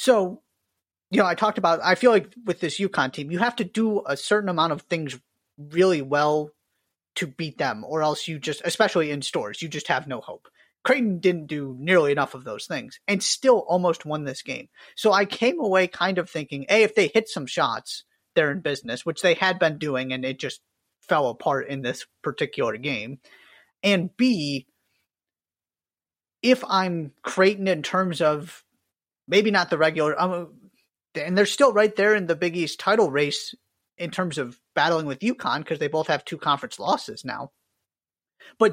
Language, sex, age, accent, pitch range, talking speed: English, male, 30-49, American, 145-185 Hz, 190 wpm